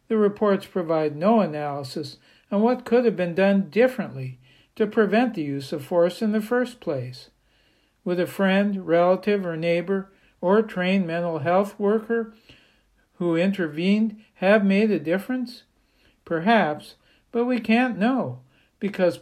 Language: English